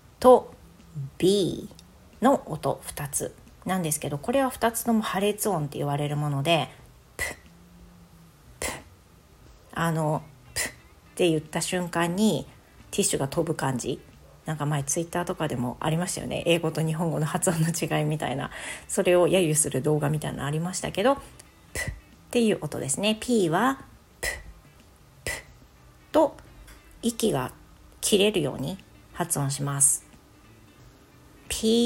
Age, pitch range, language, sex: 40-59, 145-210 Hz, Japanese, female